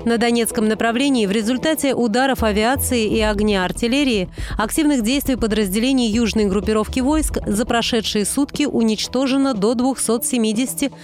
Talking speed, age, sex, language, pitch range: 120 wpm, 30-49, female, Russian, 210-255 Hz